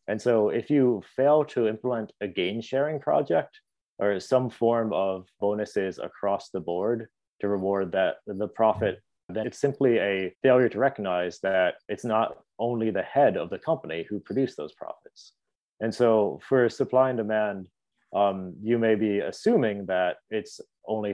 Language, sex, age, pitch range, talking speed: English, male, 30-49, 95-115 Hz, 160 wpm